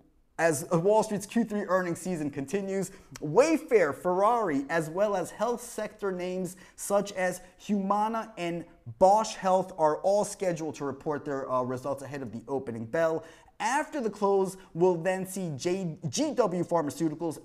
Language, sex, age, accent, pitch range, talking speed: English, male, 20-39, American, 155-205 Hz, 145 wpm